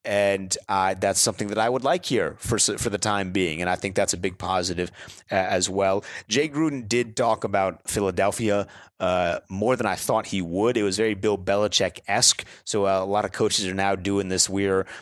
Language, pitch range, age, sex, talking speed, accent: English, 95-115 Hz, 30-49, male, 205 wpm, American